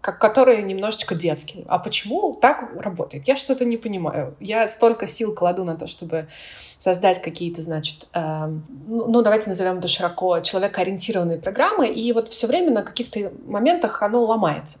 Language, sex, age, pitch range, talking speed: Russian, female, 20-39, 175-230 Hz, 155 wpm